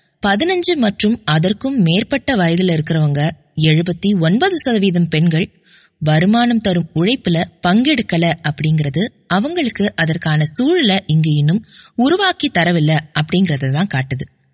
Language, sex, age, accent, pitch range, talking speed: English, female, 20-39, Indian, 160-235 Hz, 85 wpm